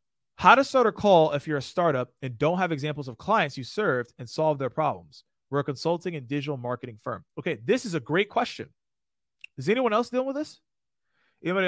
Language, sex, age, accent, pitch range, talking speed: English, male, 30-49, American, 130-175 Hz, 210 wpm